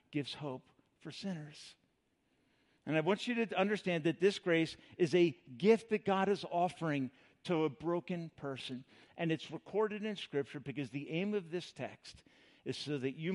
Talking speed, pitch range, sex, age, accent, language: 175 wpm, 150-210 Hz, male, 50-69, American, English